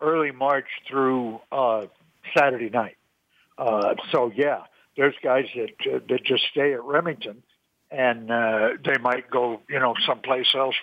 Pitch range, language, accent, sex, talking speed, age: 130-160 Hz, English, American, male, 150 wpm, 60-79